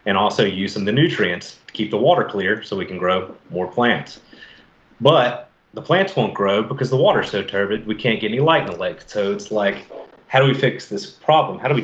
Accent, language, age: American, English, 30-49